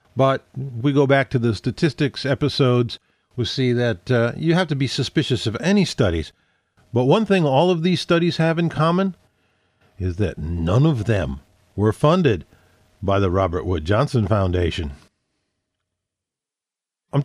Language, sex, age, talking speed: English, male, 50-69, 155 wpm